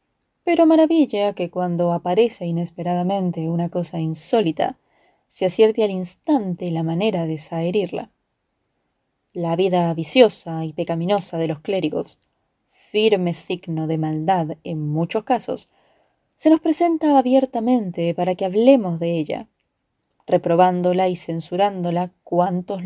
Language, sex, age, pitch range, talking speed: Spanish, female, 20-39, 175-255 Hz, 120 wpm